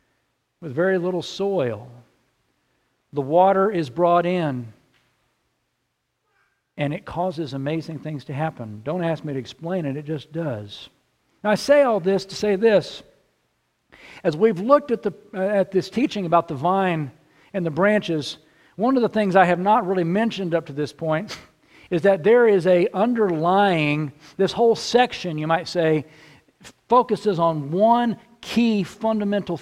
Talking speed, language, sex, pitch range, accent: 155 wpm, English, male, 160-200 Hz, American